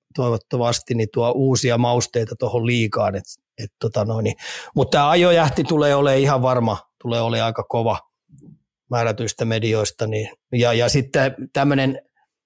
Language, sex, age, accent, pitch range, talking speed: Finnish, male, 30-49, native, 115-130 Hz, 130 wpm